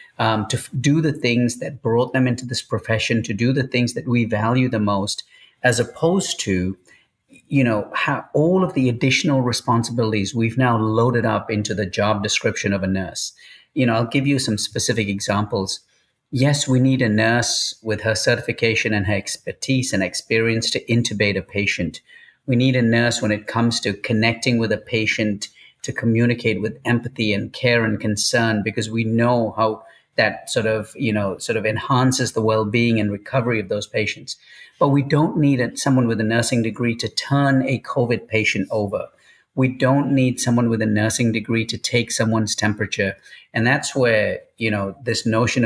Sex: male